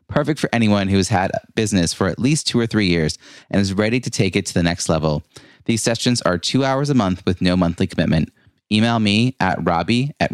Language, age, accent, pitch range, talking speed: English, 30-49, American, 100-130 Hz, 225 wpm